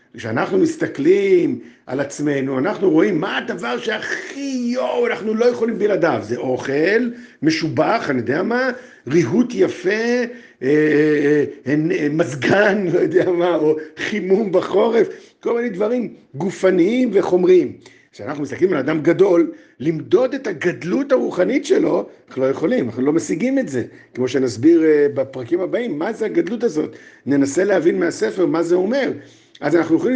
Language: Hebrew